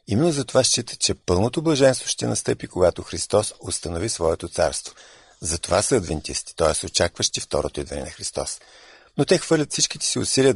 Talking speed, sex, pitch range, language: 160 wpm, male, 85-125 Hz, Bulgarian